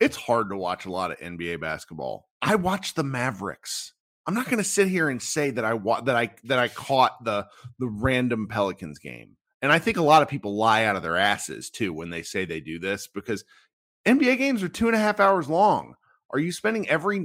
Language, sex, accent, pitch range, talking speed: English, male, American, 105-170 Hz, 235 wpm